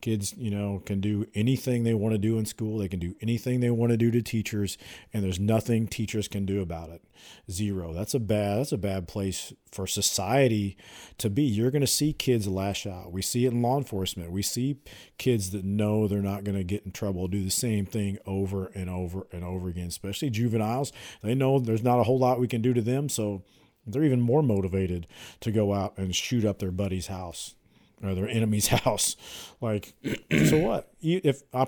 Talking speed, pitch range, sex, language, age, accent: 220 wpm, 95-125 Hz, male, English, 40-59, American